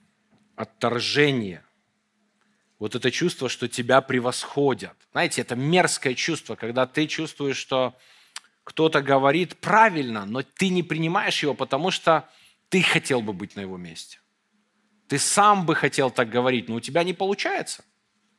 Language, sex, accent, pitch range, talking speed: Russian, male, native, 125-165 Hz, 140 wpm